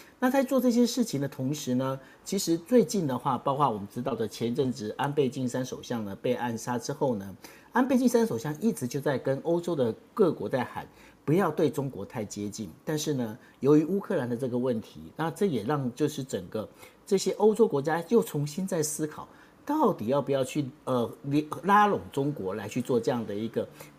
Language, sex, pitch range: Chinese, male, 120-165 Hz